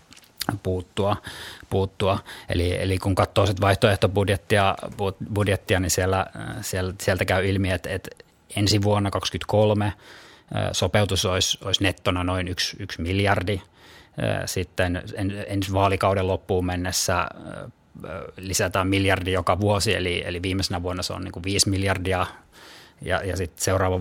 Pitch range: 90-105 Hz